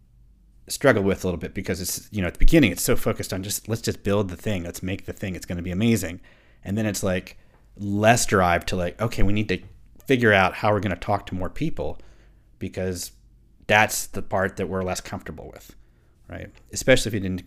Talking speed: 230 wpm